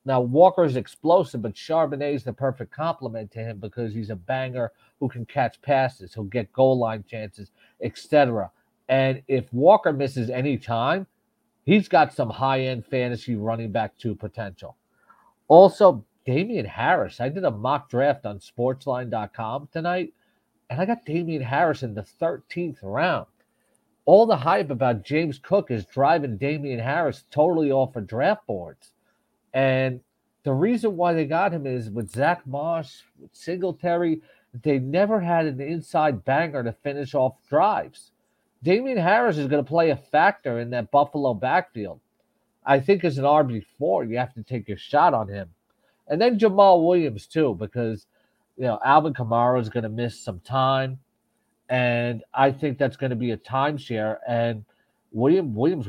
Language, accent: English, American